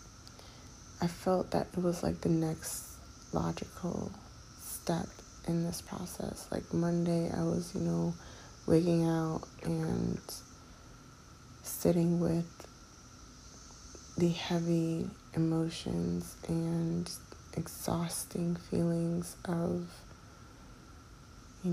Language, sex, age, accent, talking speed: English, female, 30-49, American, 90 wpm